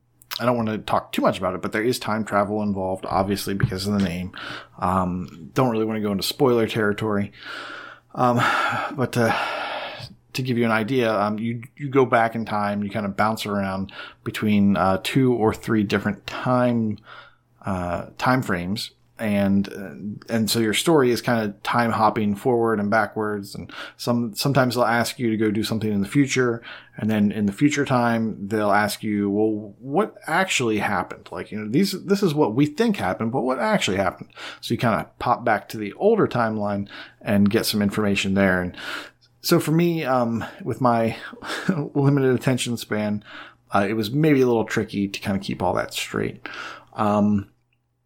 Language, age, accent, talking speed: English, 30-49, American, 190 wpm